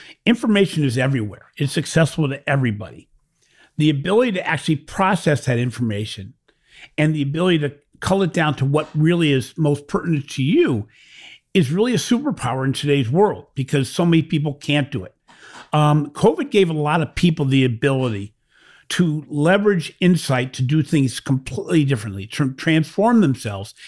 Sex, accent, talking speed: male, American, 160 wpm